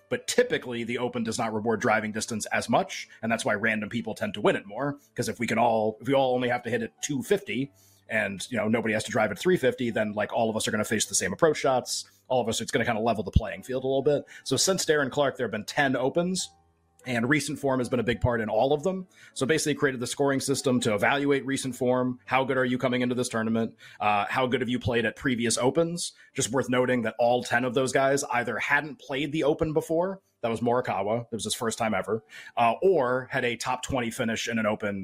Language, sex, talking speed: English, male, 260 wpm